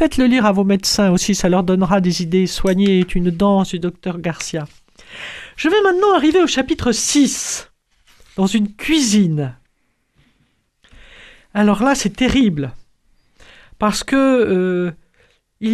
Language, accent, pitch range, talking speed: French, French, 195-250 Hz, 135 wpm